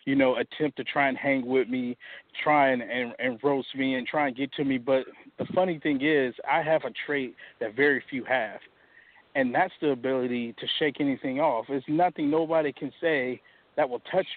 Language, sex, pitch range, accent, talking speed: English, male, 125-155 Hz, American, 210 wpm